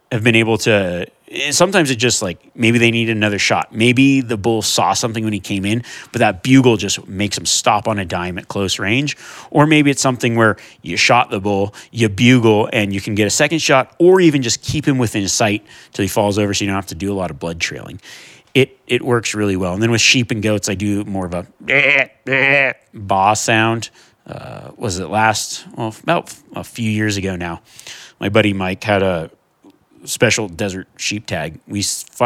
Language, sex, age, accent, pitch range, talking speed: English, male, 30-49, American, 100-120 Hz, 215 wpm